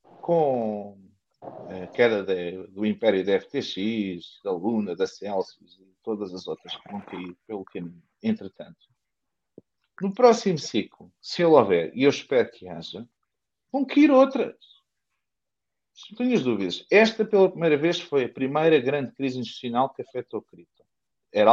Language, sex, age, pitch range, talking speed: Portuguese, male, 50-69, 110-175 Hz, 150 wpm